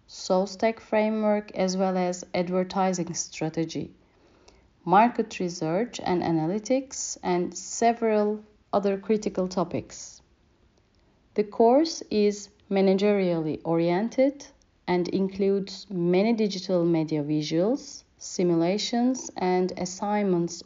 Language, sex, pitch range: Turkish, female, 175-220 Hz